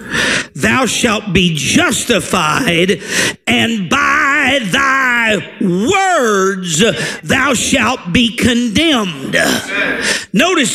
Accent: American